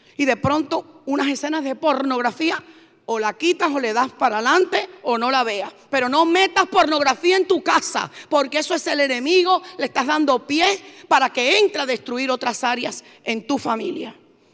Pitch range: 235-305 Hz